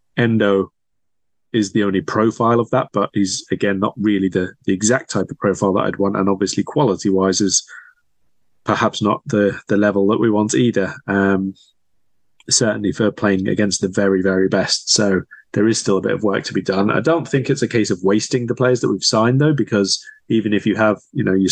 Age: 20-39